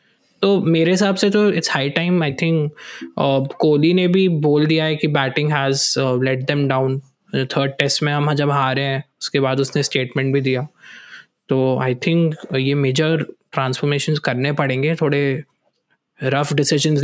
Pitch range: 135-155 Hz